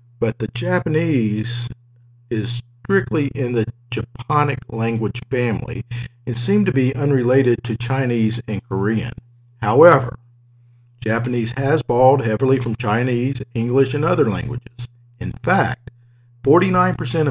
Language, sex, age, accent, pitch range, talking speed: English, male, 50-69, American, 120-130 Hz, 115 wpm